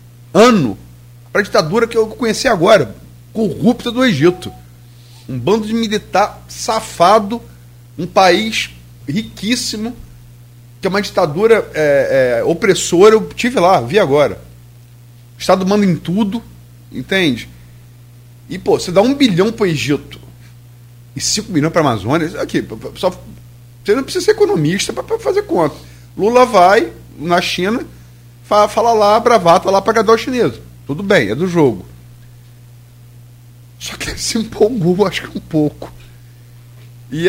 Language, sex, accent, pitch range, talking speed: Portuguese, male, Brazilian, 120-195 Hz, 140 wpm